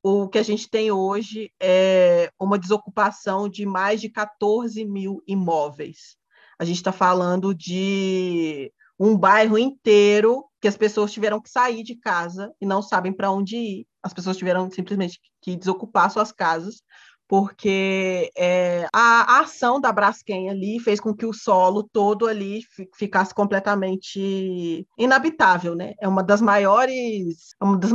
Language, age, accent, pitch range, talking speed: Portuguese, 20-39, Brazilian, 180-215 Hz, 145 wpm